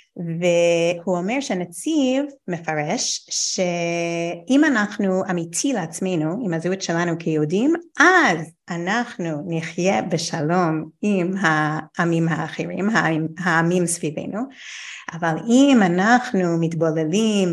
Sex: female